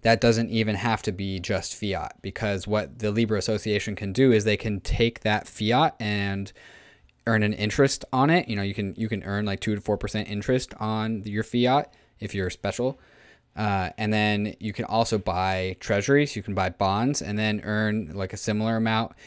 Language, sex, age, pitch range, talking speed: English, male, 20-39, 95-115 Hz, 200 wpm